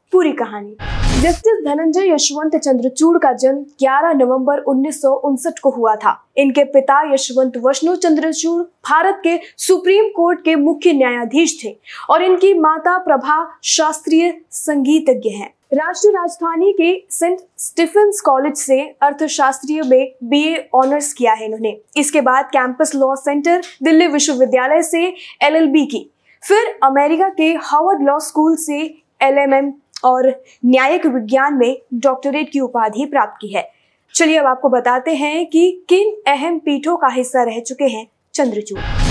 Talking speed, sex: 140 wpm, female